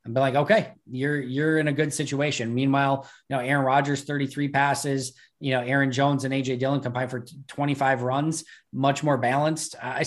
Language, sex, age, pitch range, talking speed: English, male, 20-39, 125-145 Hz, 190 wpm